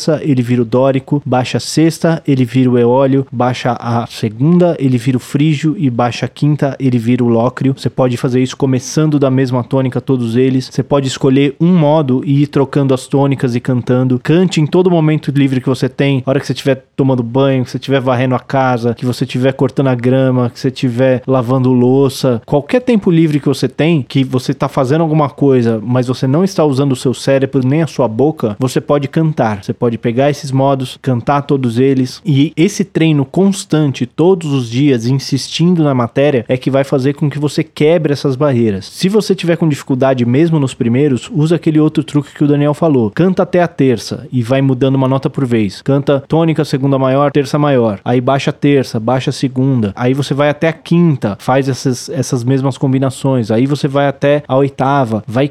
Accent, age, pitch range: Brazilian, 20-39, 130-150 Hz